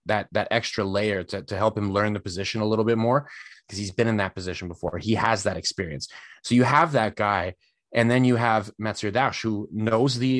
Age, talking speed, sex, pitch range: 30-49, 230 wpm, male, 105-125 Hz